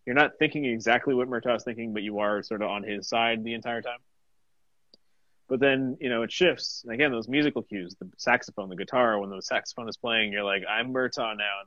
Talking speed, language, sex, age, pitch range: 225 wpm, English, male, 30-49, 100-130 Hz